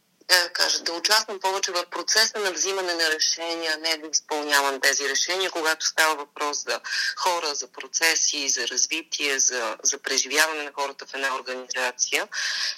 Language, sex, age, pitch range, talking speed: Bulgarian, female, 30-49, 145-185 Hz, 160 wpm